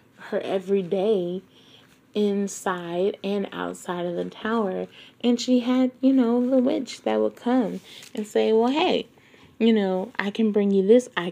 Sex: female